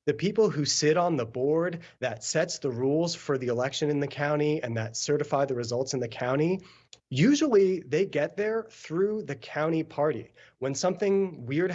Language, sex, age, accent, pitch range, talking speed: English, male, 30-49, American, 130-170 Hz, 185 wpm